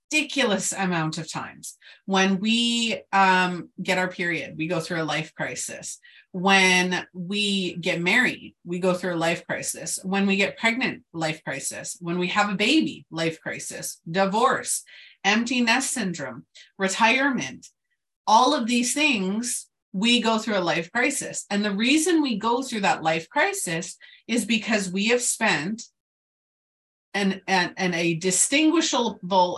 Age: 30-49